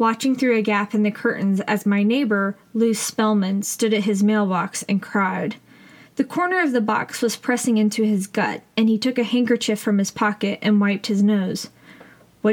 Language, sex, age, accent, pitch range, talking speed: English, female, 20-39, American, 200-230 Hz, 195 wpm